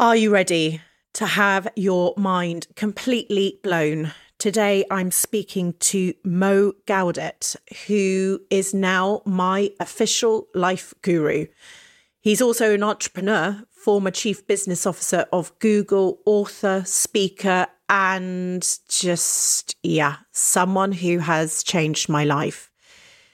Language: English